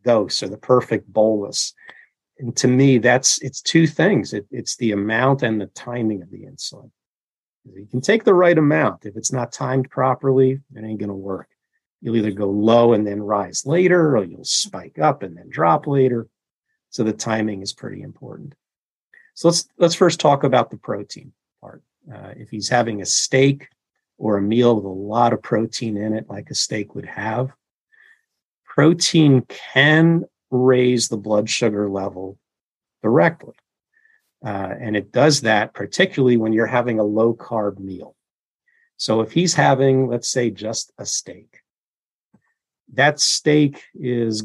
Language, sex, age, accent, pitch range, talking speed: English, male, 50-69, American, 105-135 Hz, 165 wpm